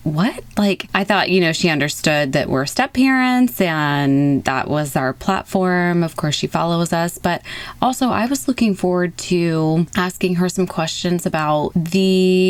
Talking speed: 170 wpm